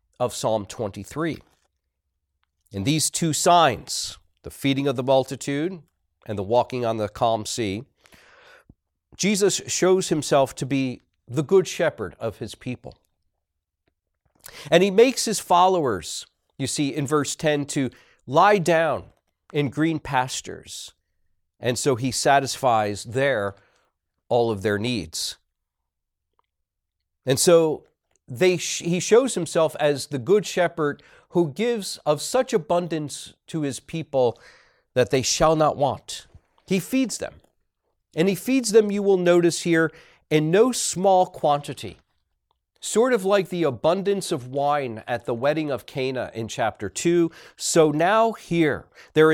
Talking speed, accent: 135 wpm, American